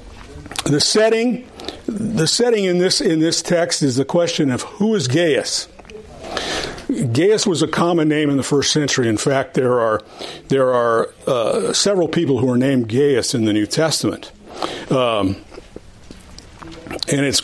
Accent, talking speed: American, 155 wpm